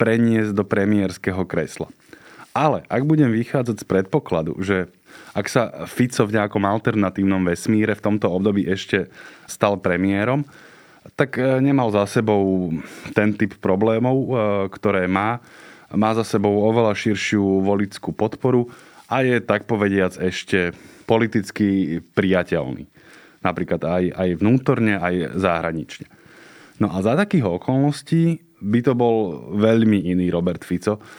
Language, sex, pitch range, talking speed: Slovak, male, 95-115 Hz, 125 wpm